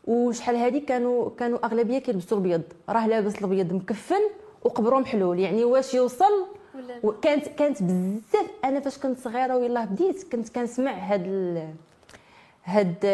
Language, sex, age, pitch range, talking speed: French, female, 20-39, 200-250 Hz, 125 wpm